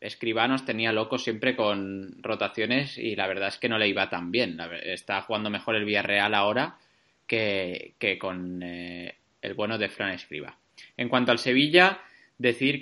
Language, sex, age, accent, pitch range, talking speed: Spanish, male, 20-39, Spanish, 100-115 Hz, 180 wpm